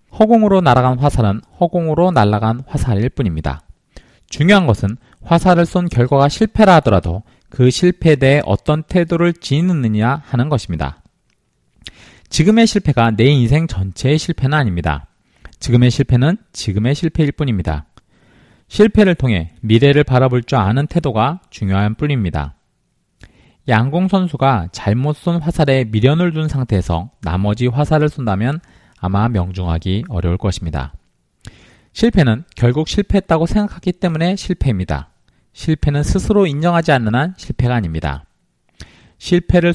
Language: Korean